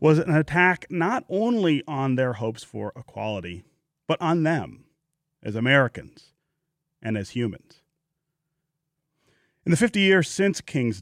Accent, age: American, 30-49